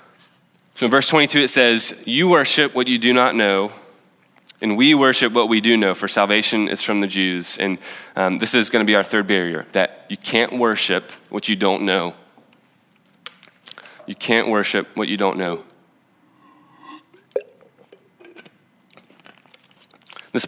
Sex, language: male, English